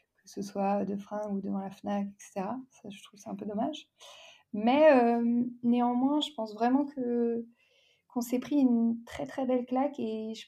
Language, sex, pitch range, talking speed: French, female, 205-245 Hz, 200 wpm